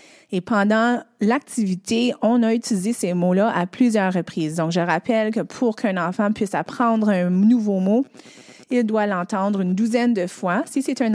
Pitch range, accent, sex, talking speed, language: 190-240 Hz, Canadian, female, 180 wpm, English